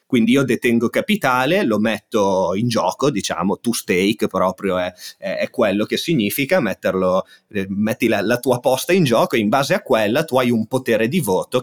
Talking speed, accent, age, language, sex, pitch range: 185 wpm, native, 30-49, Italian, male, 95-130 Hz